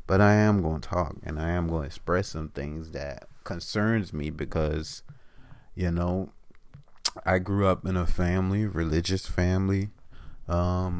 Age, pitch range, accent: 30-49, 85-105 Hz, American